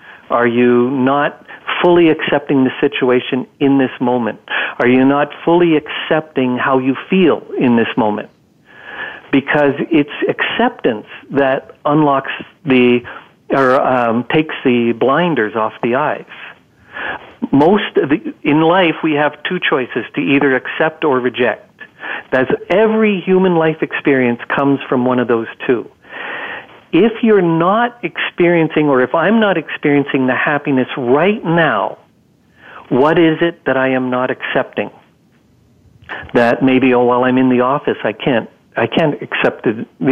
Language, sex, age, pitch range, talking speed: English, male, 50-69, 125-155 Hz, 140 wpm